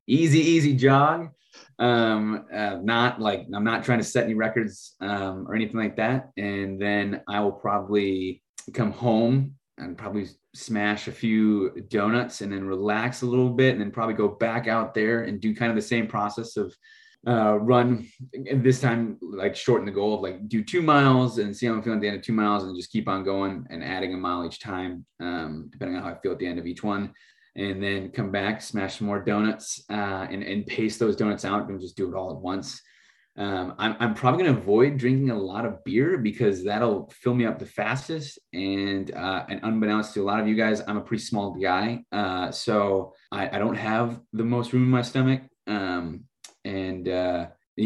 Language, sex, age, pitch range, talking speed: English, male, 20-39, 95-120 Hz, 215 wpm